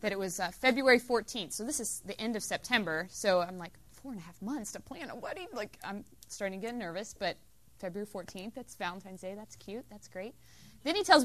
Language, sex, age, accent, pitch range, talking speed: English, female, 20-39, American, 190-265 Hz, 235 wpm